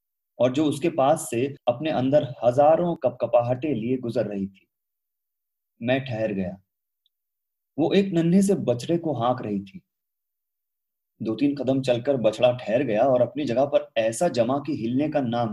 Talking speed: 165 wpm